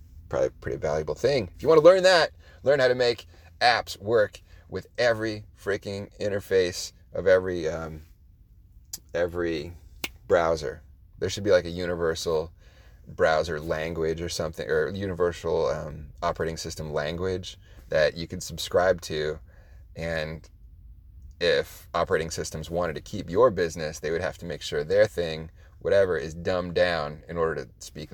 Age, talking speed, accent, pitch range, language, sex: 30-49, 150 wpm, American, 85-110 Hz, English, male